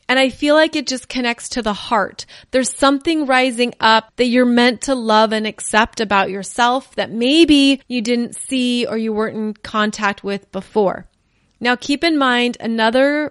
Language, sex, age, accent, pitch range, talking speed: English, female, 30-49, American, 215-270 Hz, 180 wpm